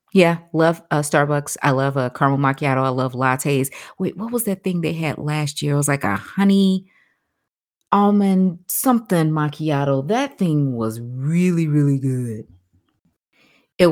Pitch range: 130-175 Hz